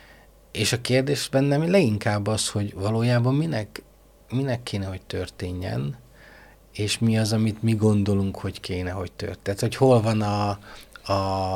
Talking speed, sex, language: 145 wpm, male, Hungarian